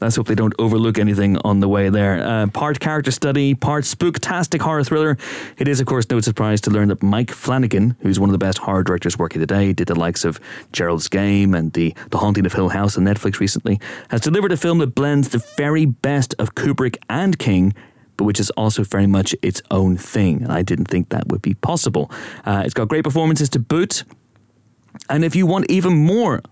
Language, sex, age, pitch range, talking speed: English, male, 30-49, 100-145 Hz, 220 wpm